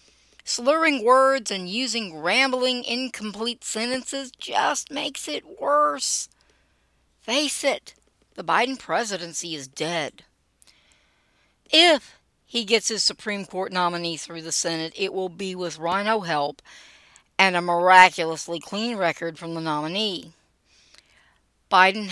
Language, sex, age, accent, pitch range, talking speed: English, female, 60-79, American, 165-245 Hz, 115 wpm